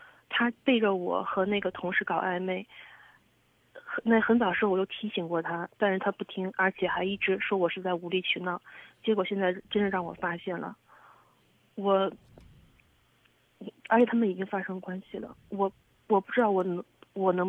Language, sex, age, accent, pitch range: Chinese, female, 30-49, native, 185-215 Hz